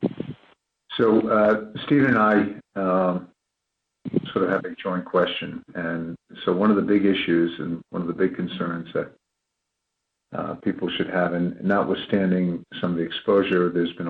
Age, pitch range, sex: 50-69, 90-100 Hz, male